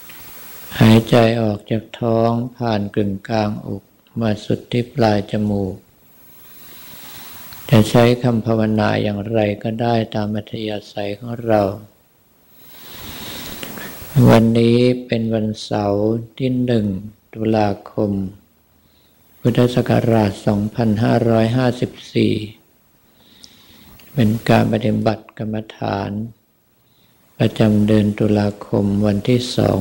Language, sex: Thai, male